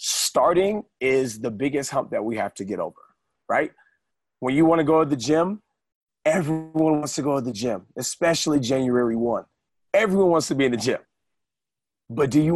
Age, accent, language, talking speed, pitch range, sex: 30-49, American, English, 190 wpm, 130-175 Hz, male